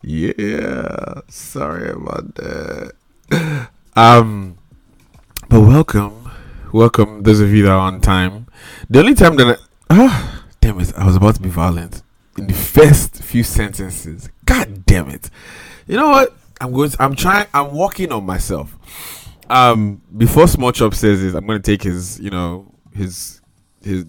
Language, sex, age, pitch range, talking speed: English, male, 20-39, 95-115 Hz, 160 wpm